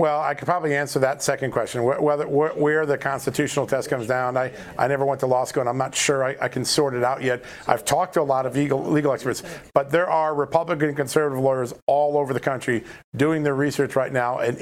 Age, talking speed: 50-69, 245 wpm